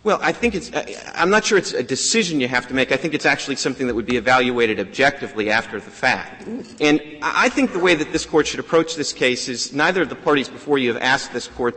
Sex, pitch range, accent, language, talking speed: male, 115-155 Hz, American, English, 255 wpm